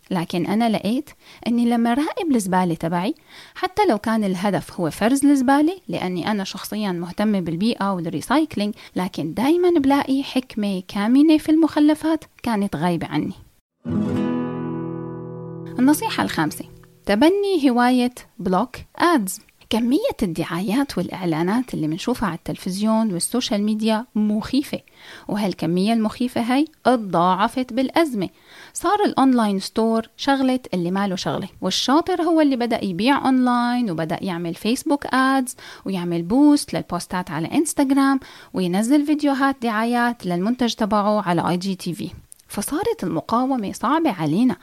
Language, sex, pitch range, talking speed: Arabic, female, 185-280 Hz, 120 wpm